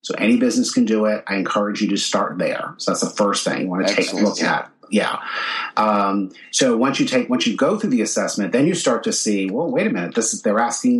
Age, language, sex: 40-59, English, male